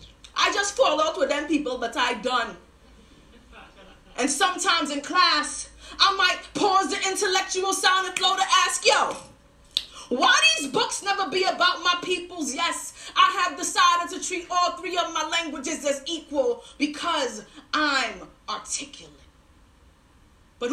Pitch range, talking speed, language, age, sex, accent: 280-360 Hz, 140 wpm, English, 30-49, female, American